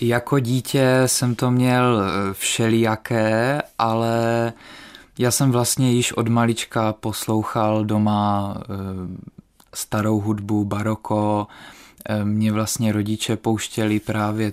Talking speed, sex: 95 wpm, male